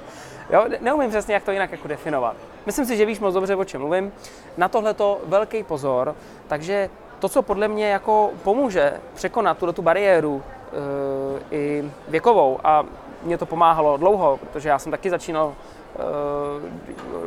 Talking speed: 165 wpm